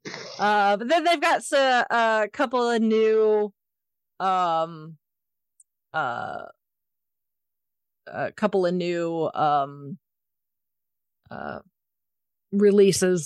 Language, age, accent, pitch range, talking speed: English, 40-59, American, 165-210 Hz, 85 wpm